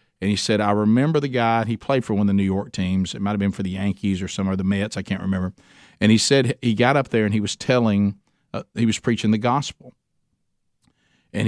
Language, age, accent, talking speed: English, 50-69, American, 255 wpm